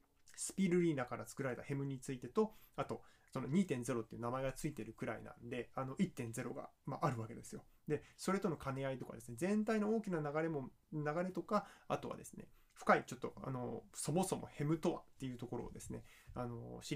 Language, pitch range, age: Japanese, 120-170 Hz, 20-39